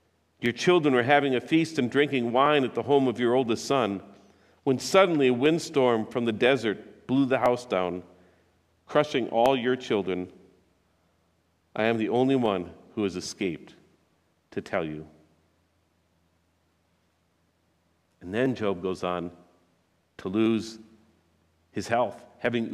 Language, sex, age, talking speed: English, male, 50-69, 135 wpm